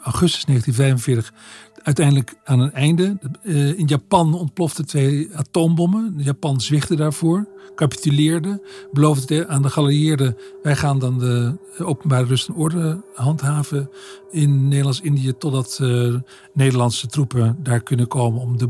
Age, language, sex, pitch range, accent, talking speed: 50-69, Dutch, male, 130-155 Hz, Dutch, 130 wpm